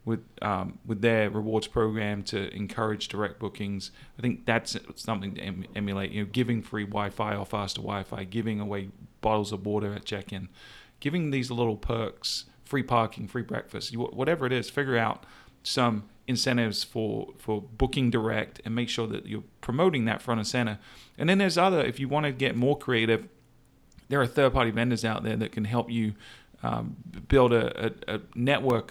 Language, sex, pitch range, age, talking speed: English, male, 105-120 Hz, 40-59, 185 wpm